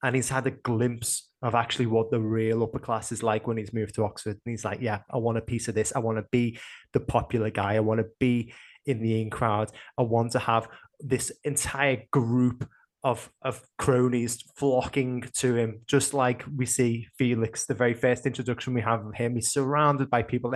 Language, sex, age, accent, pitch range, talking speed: English, male, 20-39, British, 115-135 Hz, 215 wpm